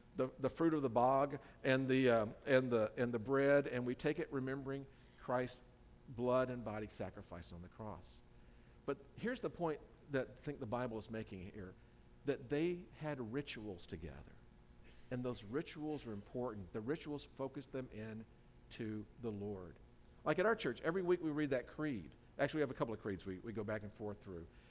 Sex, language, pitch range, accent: male, English, 115-145 Hz, American